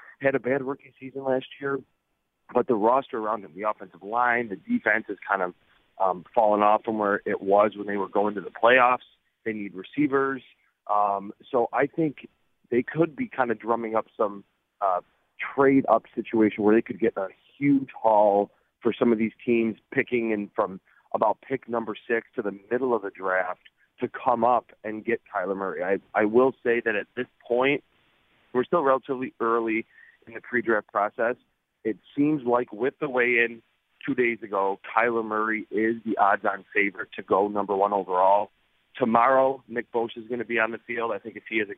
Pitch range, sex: 105-130 Hz, male